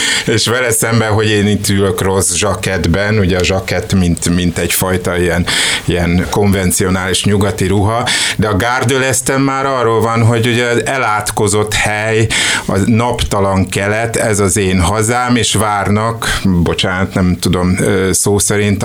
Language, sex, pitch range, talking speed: Hungarian, male, 95-115 Hz, 145 wpm